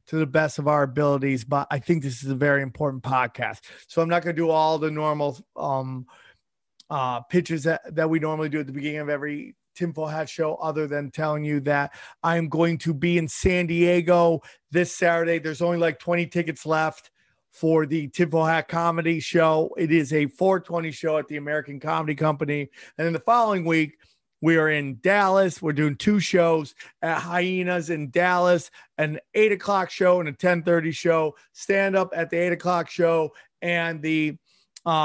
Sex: male